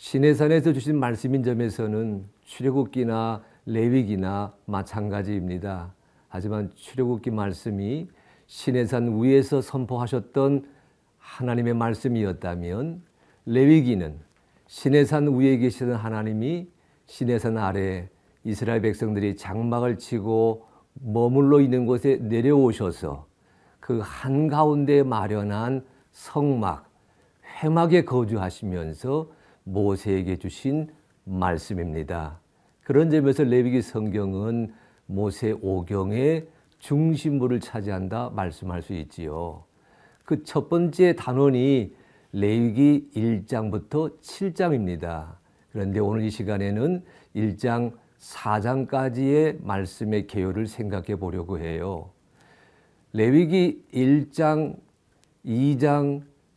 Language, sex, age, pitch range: Korean, male, 50-69, 100-140 Hz